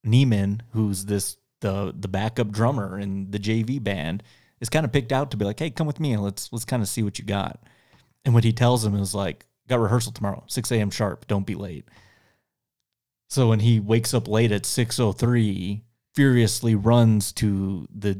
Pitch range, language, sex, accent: 100-125 Hz, English, male, American